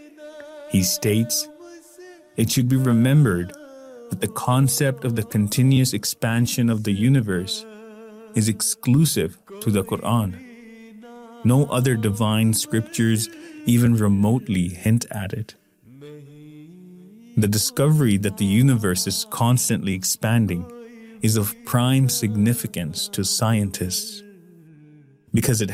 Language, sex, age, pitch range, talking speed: English, male, 30-49, 105-165 Hz, 105 wpm